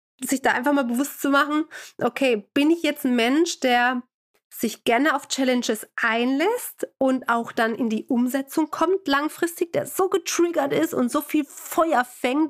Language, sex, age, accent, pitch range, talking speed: German, female, 30-49, German, 250-315 Hz, 175 wpm